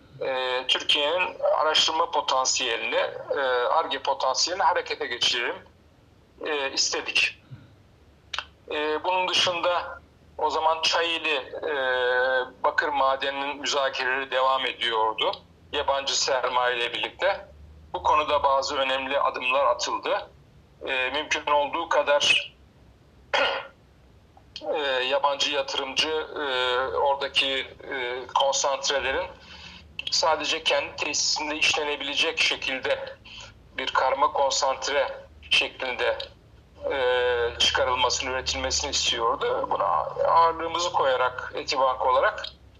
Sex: male